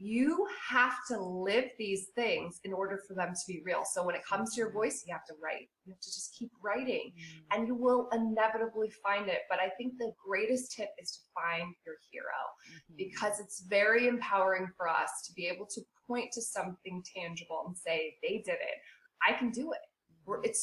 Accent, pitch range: American, 190-235 Hz